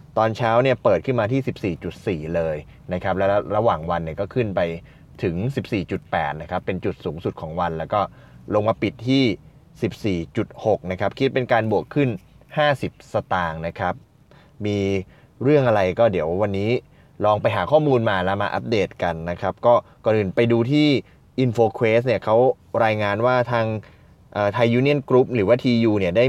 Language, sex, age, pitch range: Thai, male, 20-39, 100-130 Hz